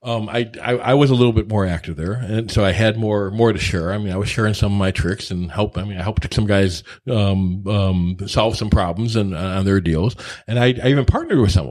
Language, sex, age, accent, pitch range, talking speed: English, male, 40-59, American, 95-125 Hz, 270 wpm